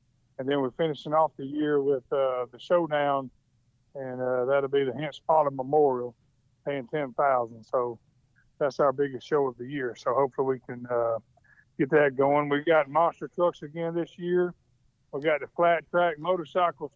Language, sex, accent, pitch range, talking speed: English, male, American, 130-165 Hz, 175 wpm